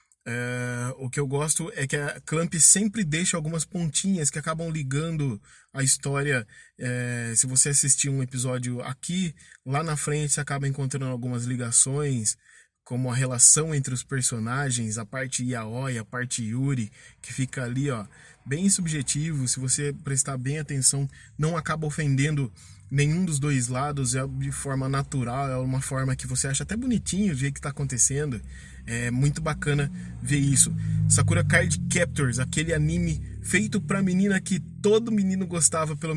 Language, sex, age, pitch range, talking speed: Portuguese, male, 20-39, 125-160 Hz, 160 wpm